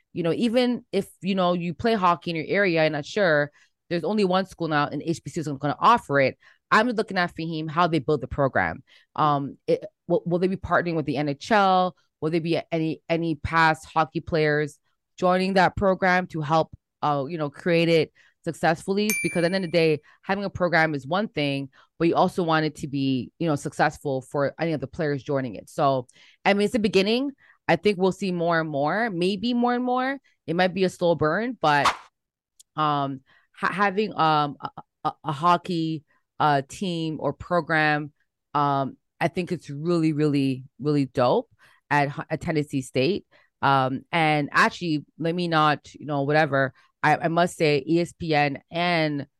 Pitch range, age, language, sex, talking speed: 145-180 Hz, 20-39, English, female, 190 wpm